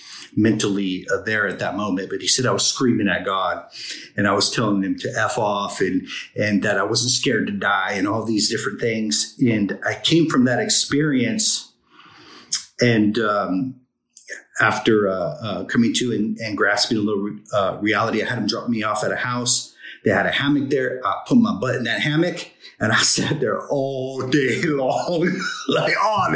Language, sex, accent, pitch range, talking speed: English, male, American, 110-145 Hz, 190 wpm